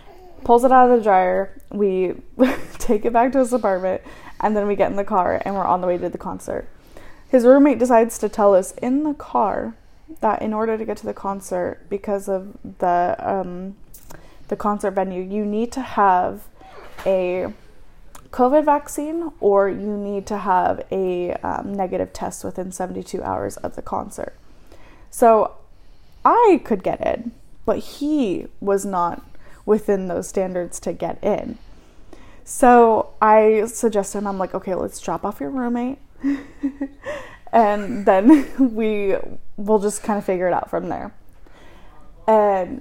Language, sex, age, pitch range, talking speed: English, female, 10-29, 190-240 Hz, 160 wpm